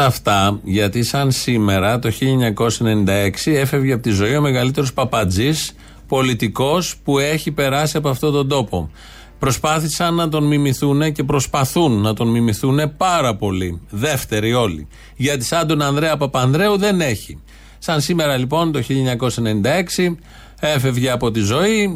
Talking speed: 135 wpm